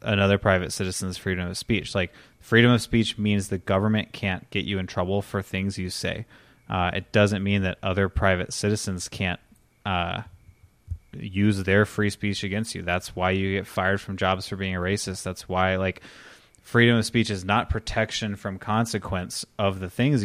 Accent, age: American, 20-39